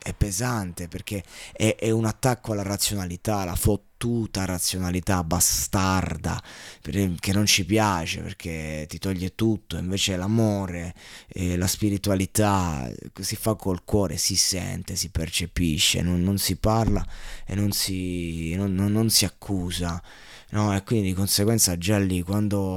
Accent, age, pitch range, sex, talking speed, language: native, 20-39, 90-100 Hz, male, 145 wpm, Italian